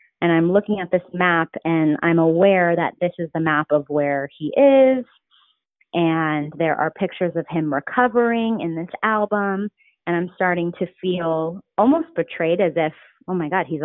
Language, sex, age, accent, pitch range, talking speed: English, female, 30-49, American, 155-185 Hz, 180 wpm